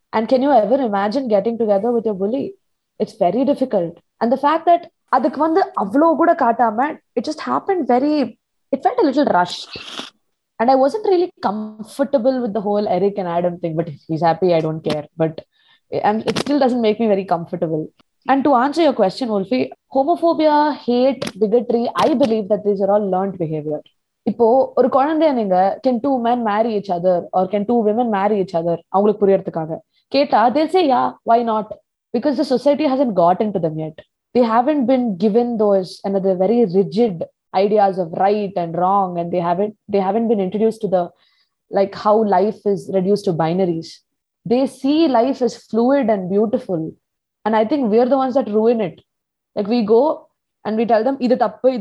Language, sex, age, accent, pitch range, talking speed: Tamil, female, 20-39, native, 190-265 Hz, 190 wpm